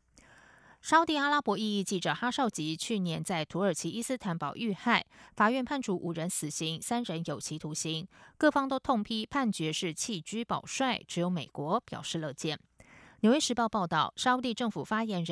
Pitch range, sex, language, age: 160-215 Hz, female, German, 20-39